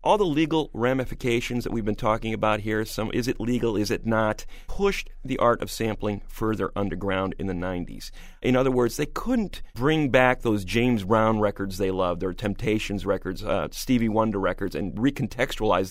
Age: 40-59